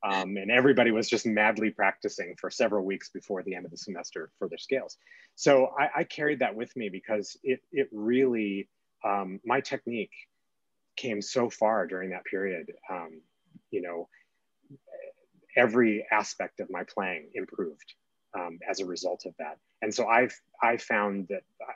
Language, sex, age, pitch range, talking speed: English, male, 30-49, 100-130 Hz, 165 wpm